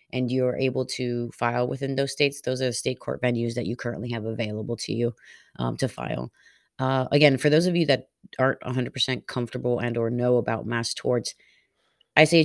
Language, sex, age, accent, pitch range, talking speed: English, female, 30-49, American, 115-130 Hz, 205 wpm